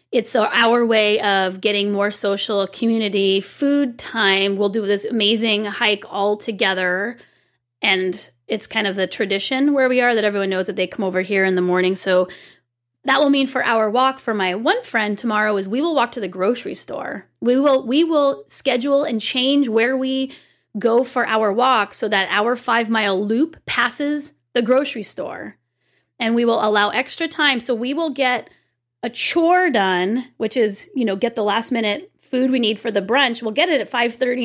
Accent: American